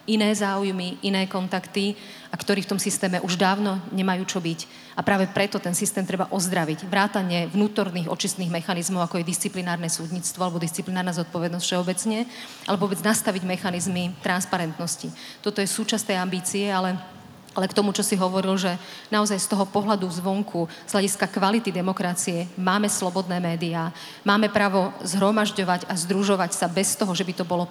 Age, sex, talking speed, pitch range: 40-59, female, 160 wpm, 180-205 Hz